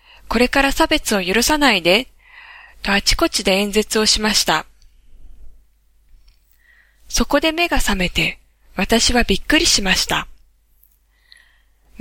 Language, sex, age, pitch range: Japanese, female, 20-39, 160-260 Hz